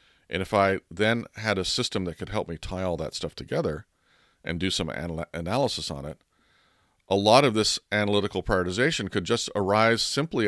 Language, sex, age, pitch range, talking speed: English, male, 40-59, 80-105 Hz, 185 wpm